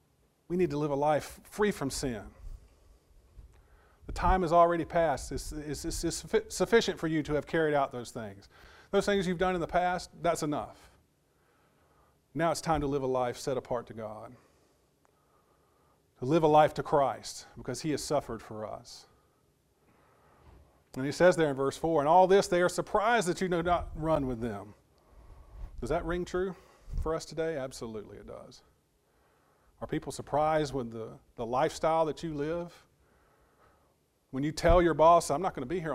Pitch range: 115-165 Hz